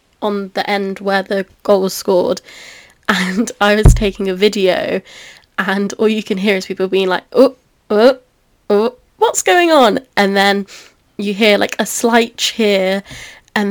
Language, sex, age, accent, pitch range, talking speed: English, female, 10-29, British, 195-215 Hz, 165 wpm